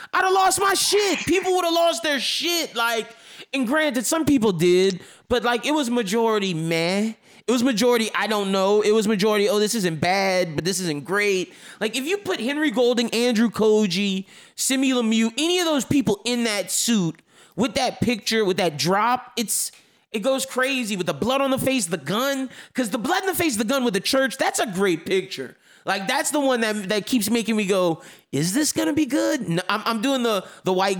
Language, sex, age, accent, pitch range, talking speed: English, male, 20-39, American, 185-270 Hz, 220 wpm